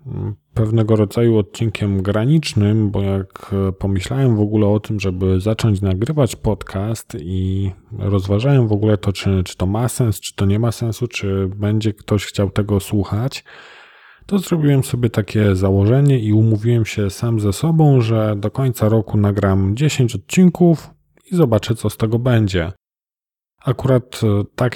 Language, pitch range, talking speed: Polish, 95-120 Hz, 150 wpm